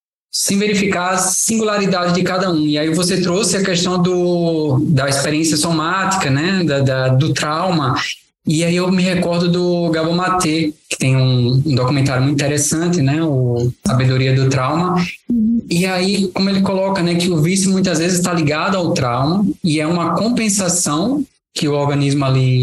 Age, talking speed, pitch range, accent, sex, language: 20-39, 170 wpm, 135-180 Hz, Brazilian, male, Portuguese